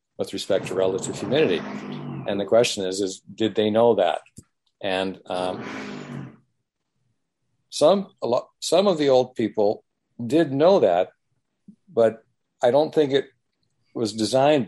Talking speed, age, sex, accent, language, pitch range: 140 wpm, 50-69, male, American, English, 105-130 Hz